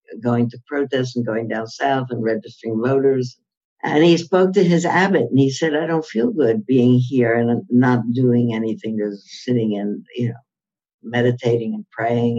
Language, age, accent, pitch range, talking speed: English, 60-79, American, 115-135 Hz, 180 wpm